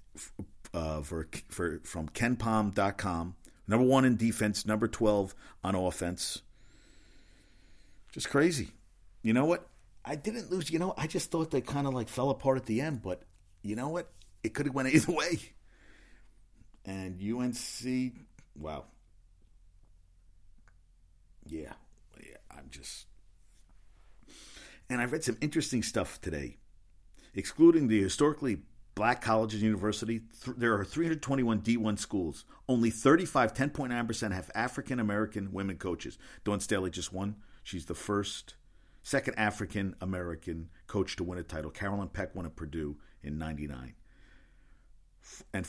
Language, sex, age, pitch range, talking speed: English, male, 50-69, 90-120 Hz, 135 wpm